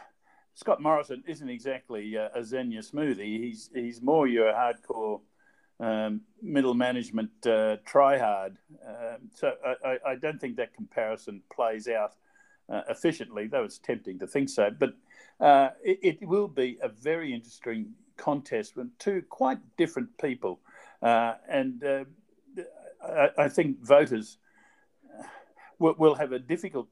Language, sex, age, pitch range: English, male, 50-69, 120-195 Hz